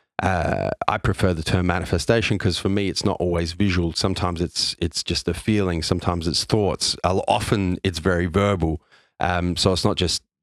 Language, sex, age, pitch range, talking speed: English, male, 30-49, 90-115 Hz, 180 wpm